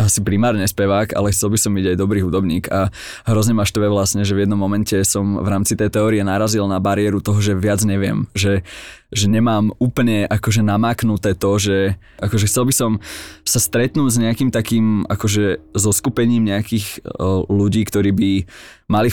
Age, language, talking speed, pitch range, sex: 20-39, Slovak, 175 wpm, 95-110 Hz, male